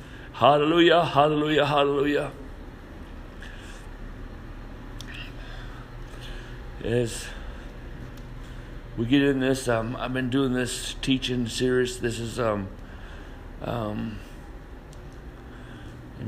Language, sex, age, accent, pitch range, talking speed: English, male, 60-79, American, 115-145 Hz, 75 wpm